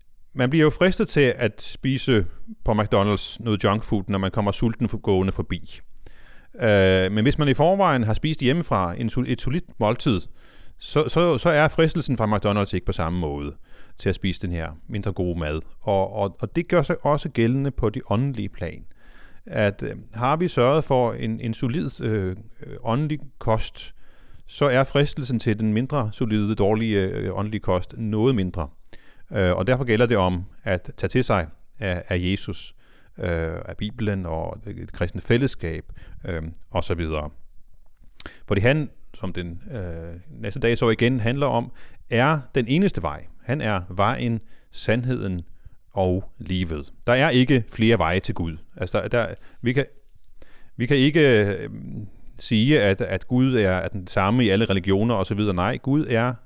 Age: 30-49